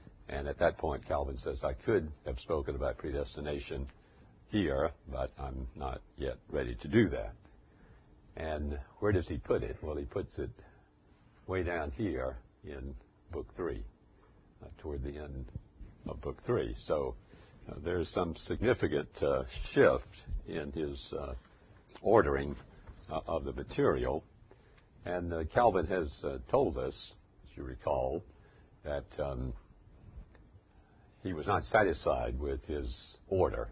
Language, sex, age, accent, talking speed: English, male, 60-79, American, 135 wpm